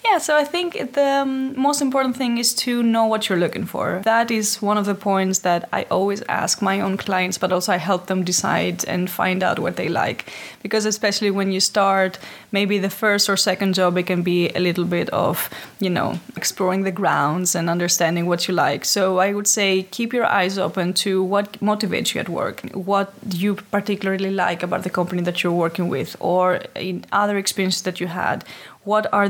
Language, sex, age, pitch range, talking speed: English, female, 20-39, 185-215 Hz, 210 wpm